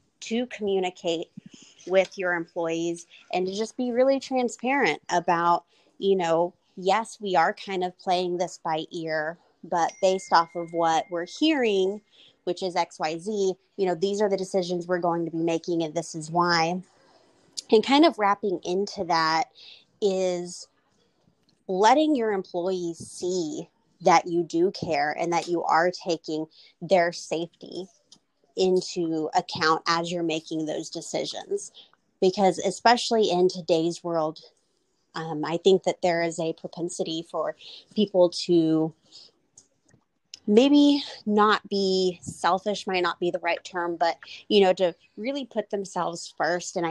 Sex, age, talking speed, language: female, 30-49, 145 wpm, English